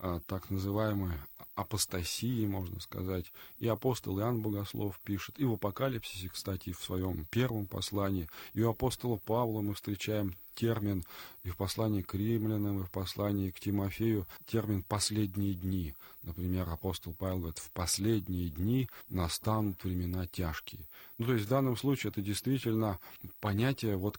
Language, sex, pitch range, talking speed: Russian, male, 95-115 Hz, 145 wpm